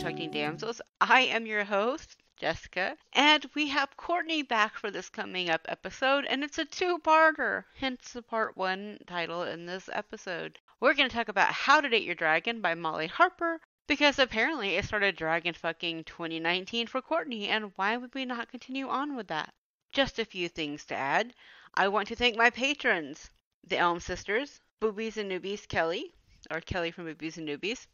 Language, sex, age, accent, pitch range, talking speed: English, female, 30-49, American, 180-250 Hz, 185 wpm